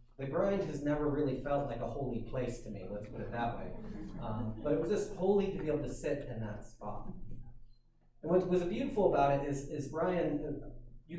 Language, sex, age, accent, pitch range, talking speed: English, male, 30-49, American, 115-150 Hz, 220 wpm